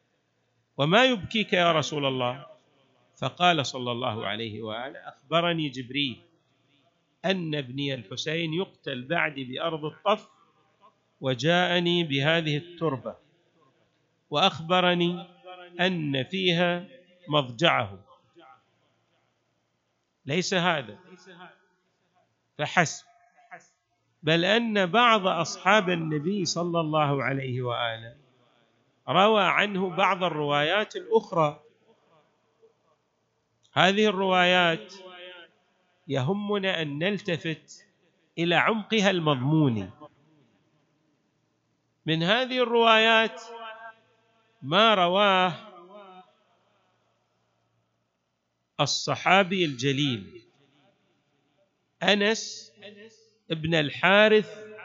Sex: male